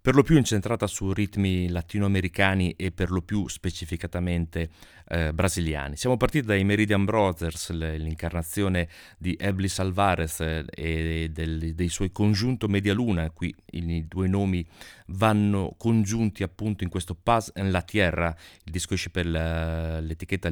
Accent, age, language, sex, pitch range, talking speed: native, 30-49, Italian, male, 85-105 Hz, 140 wpm